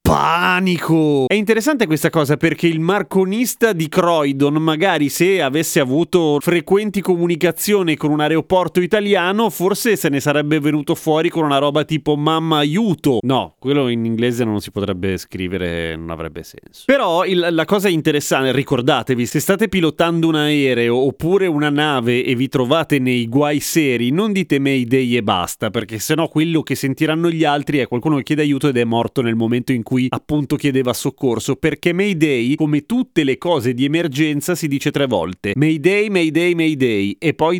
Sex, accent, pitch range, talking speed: male, native, 135-175 Hz, 170 wpm